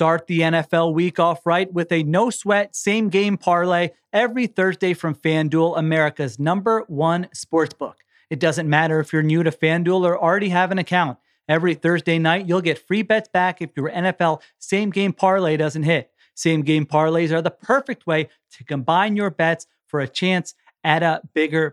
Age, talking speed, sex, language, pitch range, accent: 30-49, 175 wpm, male, English, 155-190 Hz, American